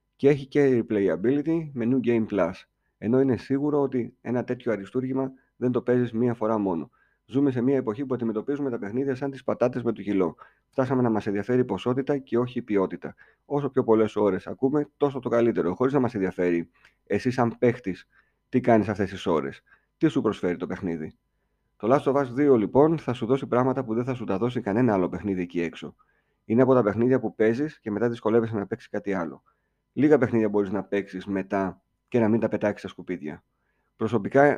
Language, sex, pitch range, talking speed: Greek, male, 100-130 Hz, 205 wpm